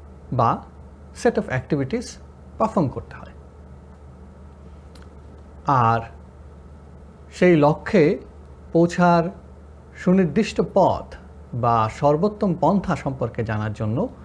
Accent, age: native, 50-69